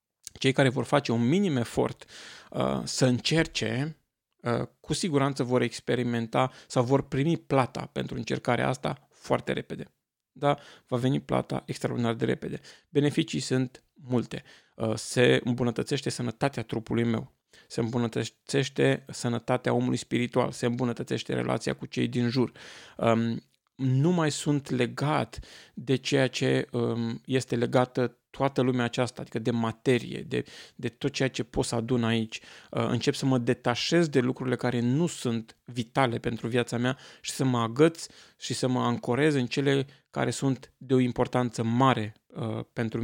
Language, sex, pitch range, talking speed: Romanian, male, 120-145 Hz, 145 wpm